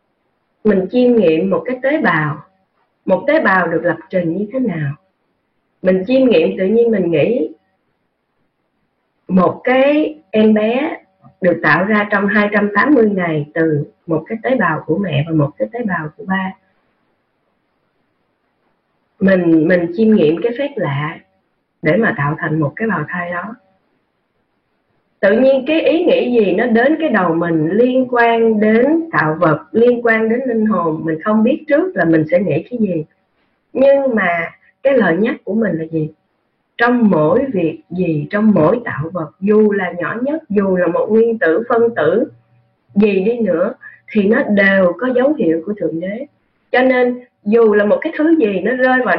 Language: Vietnamese